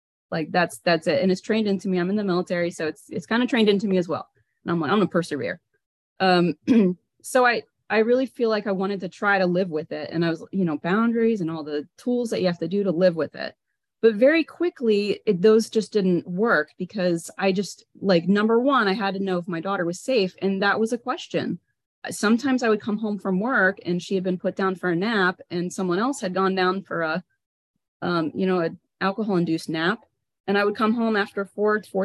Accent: American